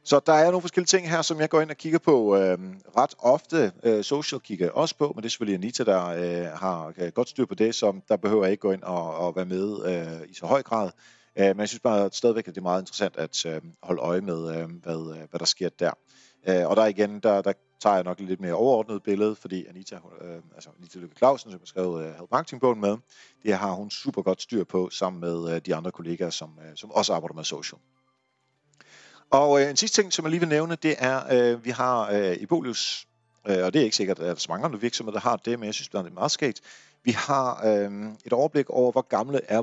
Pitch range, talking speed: 95-130 Hz, 250 wpm